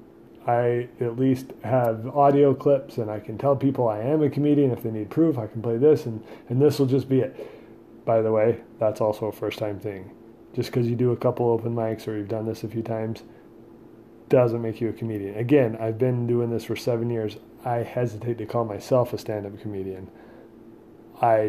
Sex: male